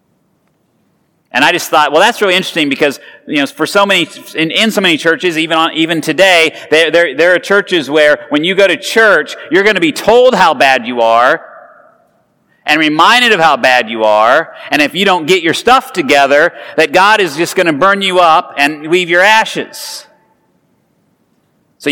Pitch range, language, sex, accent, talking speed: 150-215 Hz, English, male, American, 195 wpm